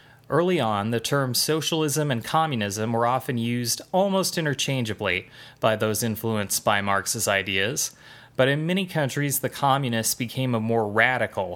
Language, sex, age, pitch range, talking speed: English, male, 30-49, 115-140 Hz, 145 wpm